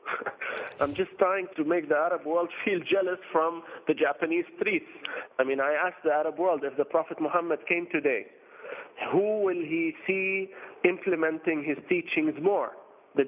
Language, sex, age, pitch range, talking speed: English, male, 40-59, 155-225 Hz, 165 wpm